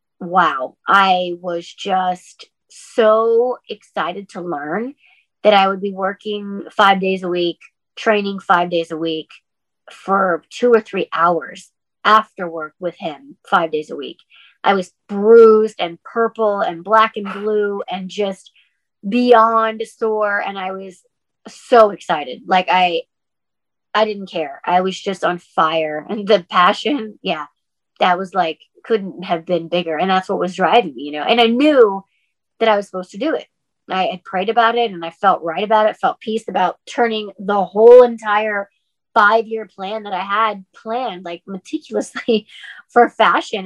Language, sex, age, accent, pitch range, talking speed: English, female, 30-49, American, 185-230 Hz, 165 wpm